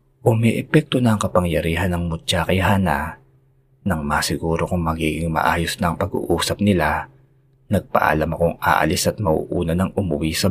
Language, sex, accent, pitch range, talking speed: Filipino, male, native, 80-115 Hz, 135 wpm